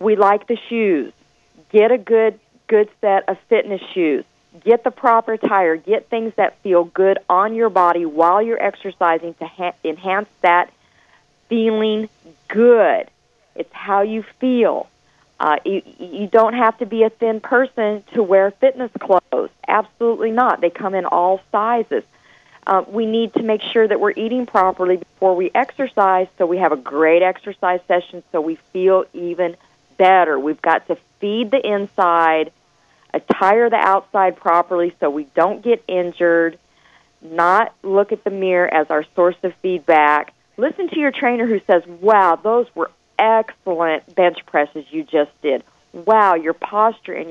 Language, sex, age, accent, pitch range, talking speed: English, female, 40-59, American, 175-225 Hz, 160 wpm